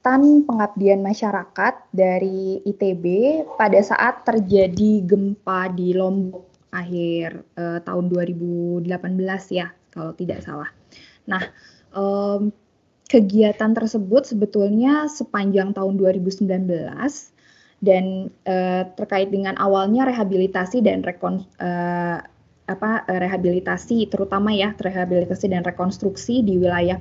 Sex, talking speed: female, 100 wpm